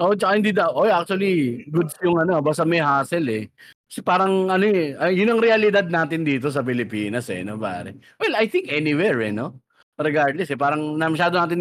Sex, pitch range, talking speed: male, 115-150 Hz, 190 wpm